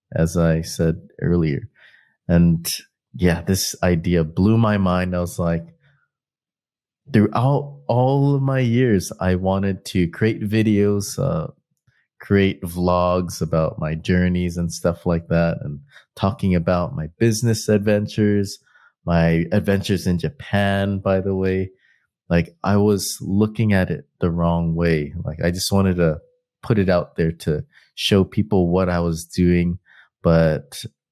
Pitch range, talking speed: 85-105 Hz, 140 wpm